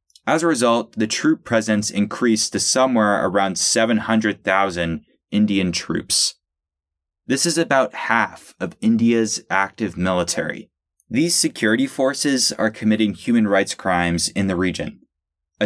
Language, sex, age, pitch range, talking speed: English, male, 20-39, 95-120 Hz, 125 wpm